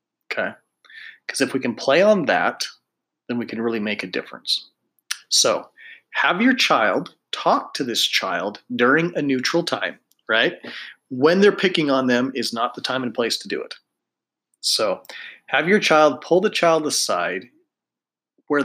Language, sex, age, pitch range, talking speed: English, male, 30-49, 120-185 Hz, 165 wpm